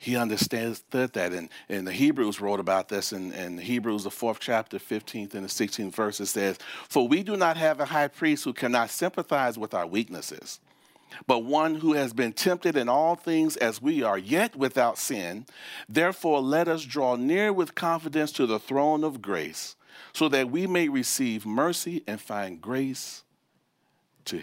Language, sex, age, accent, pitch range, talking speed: English, male, 40-59, American, 115-180 Hz, 180 wpm